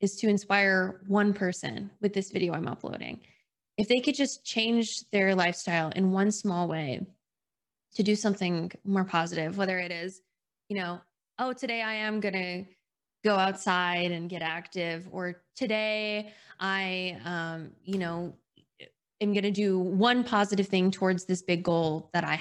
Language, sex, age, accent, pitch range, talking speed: English, female, 20-39, American, 175-210 Hz, 160 wpm